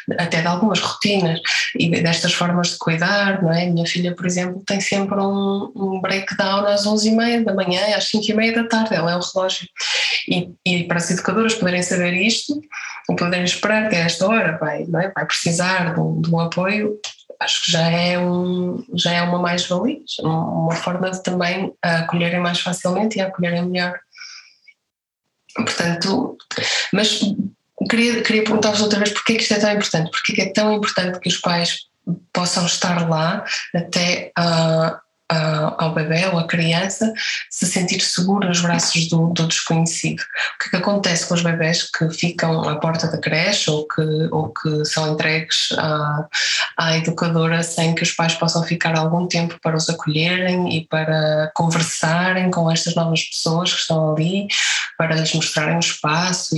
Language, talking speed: Portuguese, 175 wpm